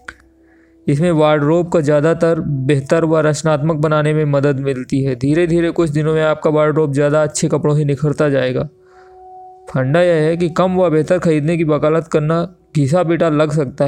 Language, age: Hindi, 20-39